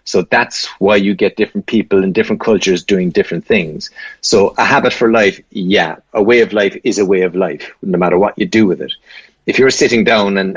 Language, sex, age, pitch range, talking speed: English, male, 30-49, 95-105 Hz, 235 wpm